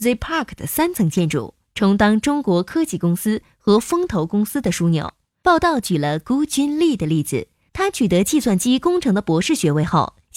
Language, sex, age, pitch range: Chinese, female, 20-39, 170-260 Hz